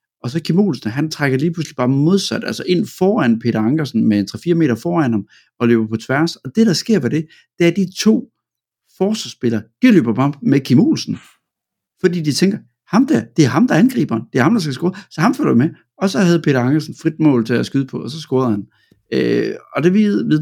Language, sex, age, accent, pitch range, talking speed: Danish, male, 60-79, native, 115-155 Hz, 240 wpm